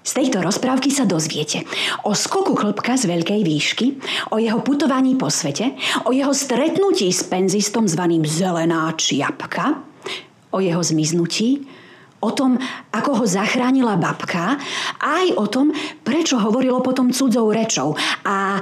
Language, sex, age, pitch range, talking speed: Slovak, female, 30-49, 170-265 Hz, 135 wpm